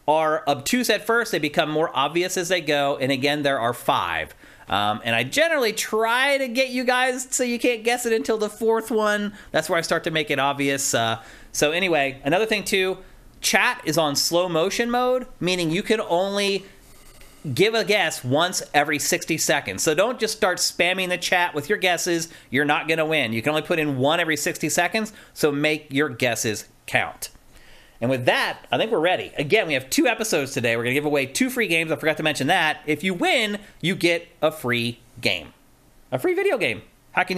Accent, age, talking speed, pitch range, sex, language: American, 30-49, 215 wpm, 140-205 Hz, male, English